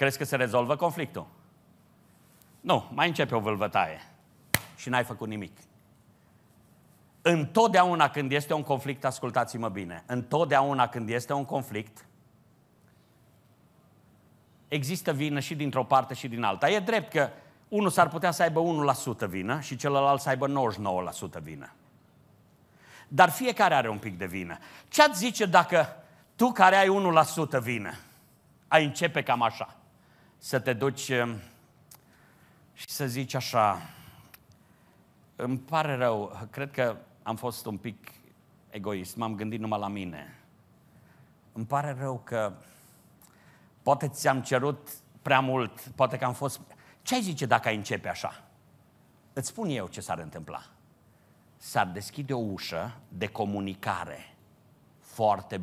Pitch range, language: 110-150 Hz, Romanian